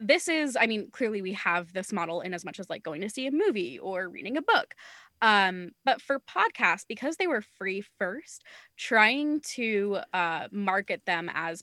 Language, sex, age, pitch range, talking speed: English, female, 20-39, 180-230 Hz, 195 wpm